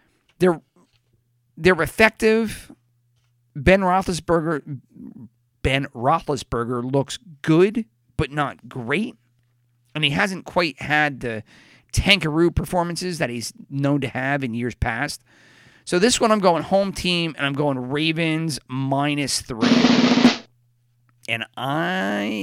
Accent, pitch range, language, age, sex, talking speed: American, 120-170 Hz, English, 40-59, male, 115 wpm